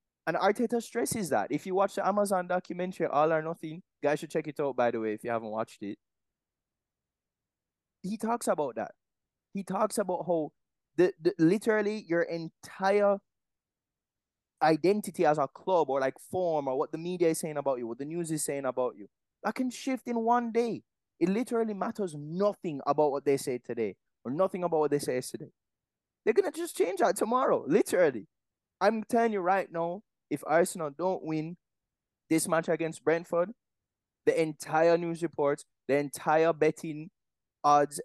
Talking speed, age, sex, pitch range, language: 175 wpm, 20-39, male, 135-190 Hz, English